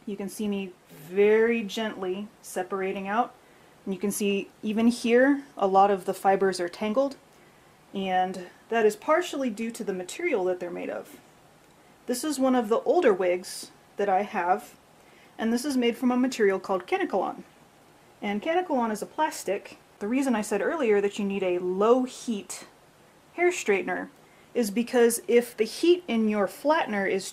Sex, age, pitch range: female, 30-49, 200-255 Hz